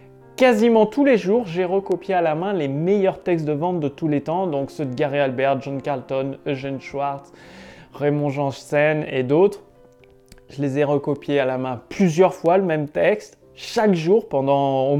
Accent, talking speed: French, 190 wpm